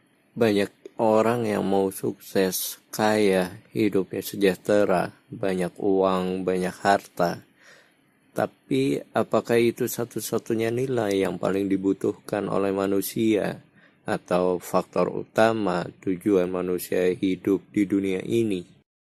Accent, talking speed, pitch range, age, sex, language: native, 100 wpm, 95-120 Hz, 20-39, male, Indonesian